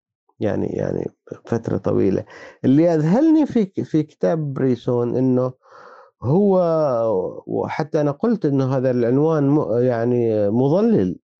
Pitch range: 115-175 Hz